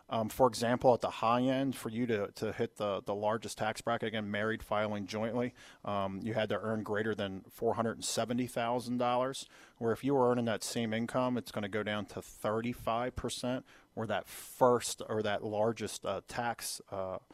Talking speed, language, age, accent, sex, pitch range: 185 wpm, English, 40-59, American, male, 105-125 Hz